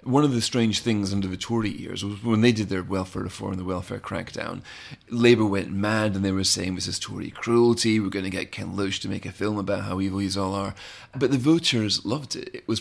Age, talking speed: 30-49, 250 wpm